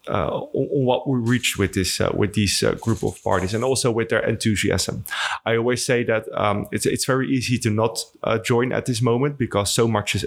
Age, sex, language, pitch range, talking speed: 30-49, male, English, 100-115 Hz, 235 wpm